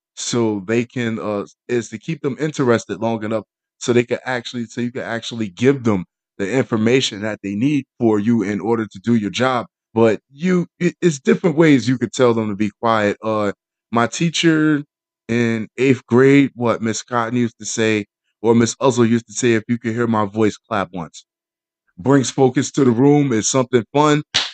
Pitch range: 110-140 Hz